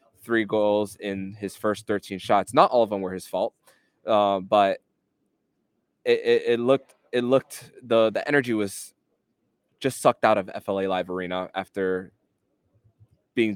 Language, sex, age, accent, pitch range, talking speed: English, male, 20-39, American, 100-115 Hz, 155 wpm